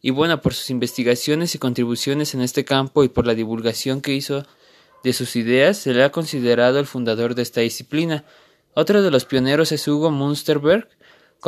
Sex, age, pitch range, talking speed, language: male, 20-39, 120-150 Hz, 185 wpm, Spanish